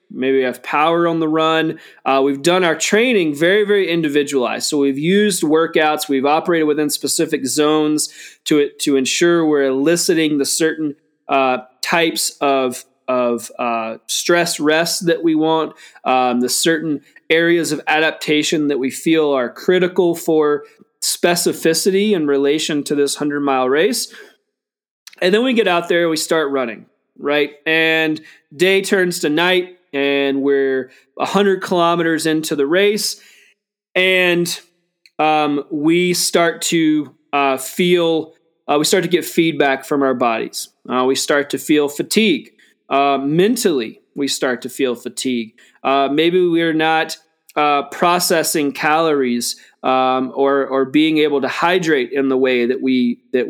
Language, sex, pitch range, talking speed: English, male, 140-170 Hz, 150 wpm